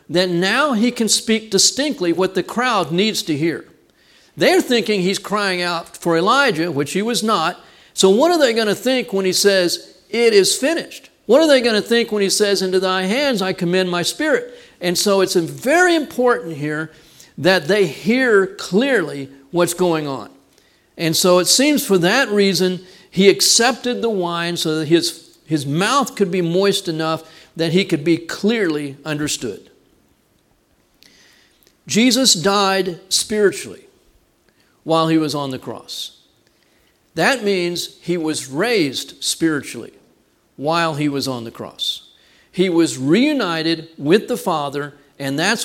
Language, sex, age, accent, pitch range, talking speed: English, male, 50-69, American, 155-215 Hz, 160 wpm